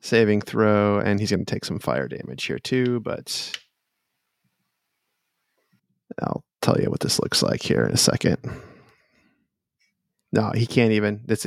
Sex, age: male, 20-39